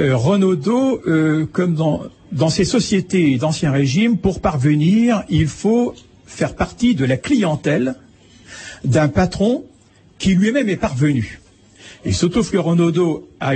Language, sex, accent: French, male, French